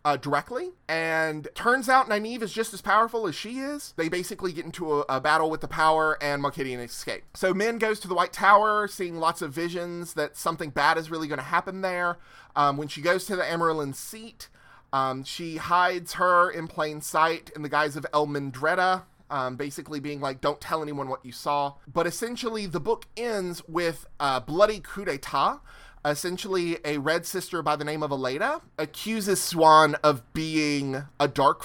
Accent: American